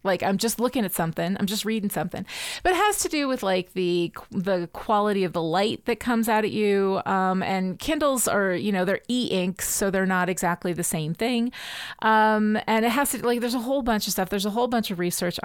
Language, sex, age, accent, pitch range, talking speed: English, female, 30-49, American, 190-255 Hz, 235 wpm